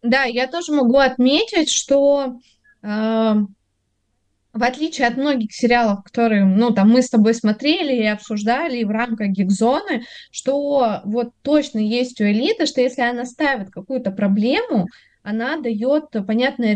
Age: 20-39